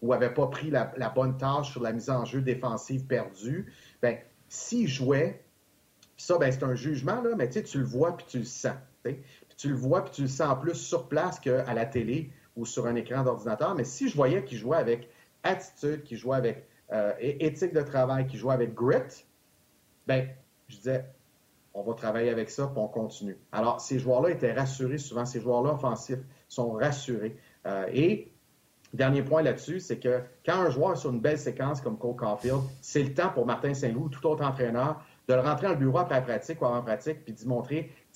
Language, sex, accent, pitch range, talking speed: French, male, Canadian, 125-150 Hz, 210 wpm